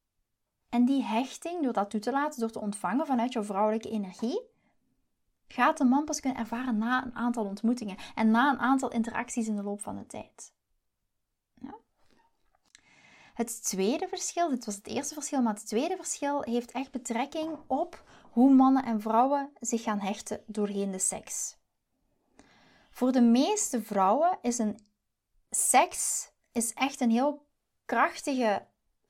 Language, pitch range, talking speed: Dutch, 215-275 Hz, 150 wpm